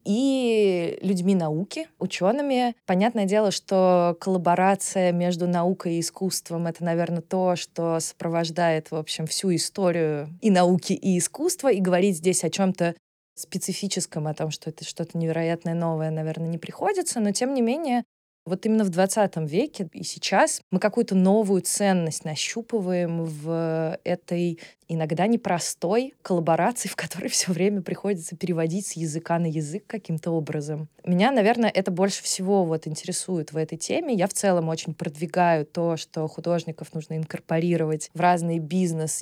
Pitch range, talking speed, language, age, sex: 165-200 Hz, 145 wpm, Russian, 20-39, female